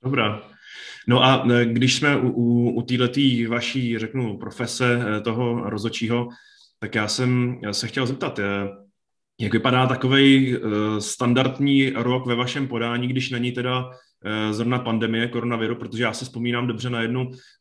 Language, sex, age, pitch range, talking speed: Czech, male, 20-39, 110-130 Hz, 155 wpm